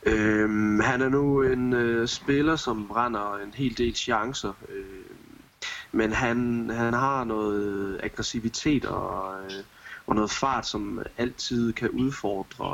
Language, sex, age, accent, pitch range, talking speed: Danish, male, 20-39, native, 105-120 Hz, 120 wpm